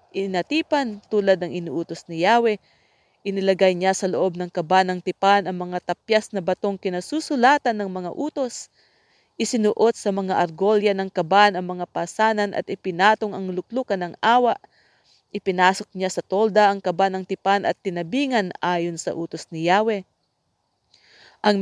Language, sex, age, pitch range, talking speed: English, female, 40-59, 180-215 Hz, 150 wpm